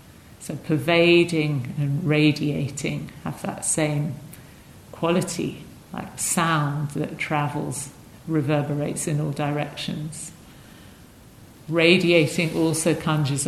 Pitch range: 145-165 Hz